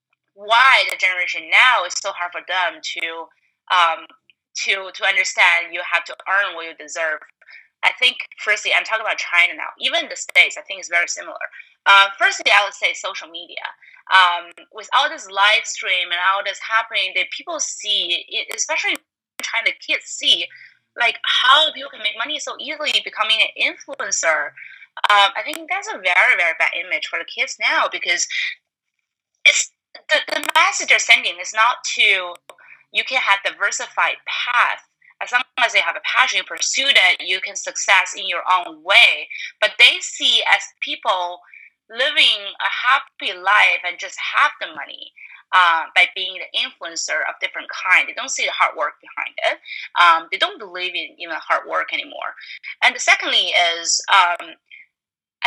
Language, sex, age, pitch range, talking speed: English, female, 20-39, 185-295 Hz, 175 wpm